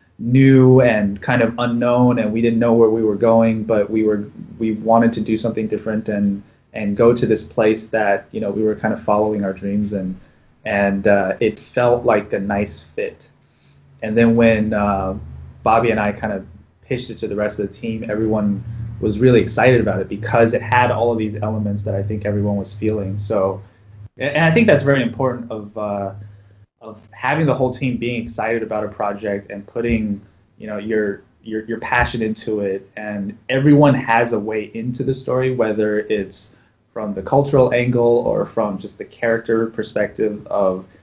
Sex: male